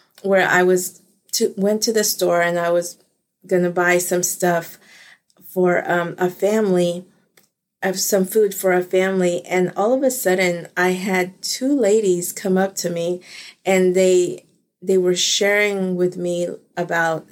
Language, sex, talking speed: English, female, 160 wpm